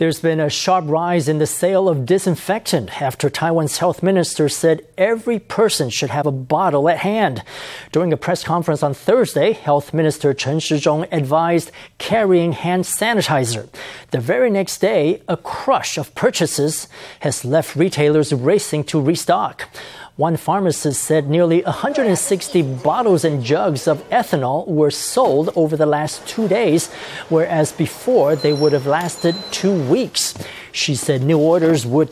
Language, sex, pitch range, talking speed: English, male, 150-180 Hz, 150 wpm